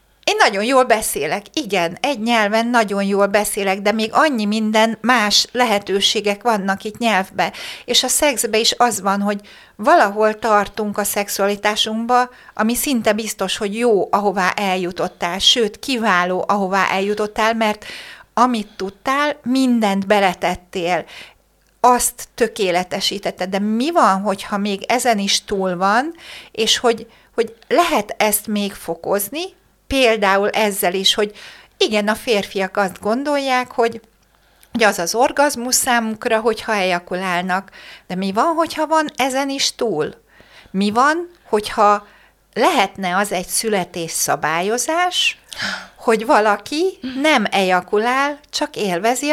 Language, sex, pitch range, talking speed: Hungarian, female, 200-245 Hz, 125 wpm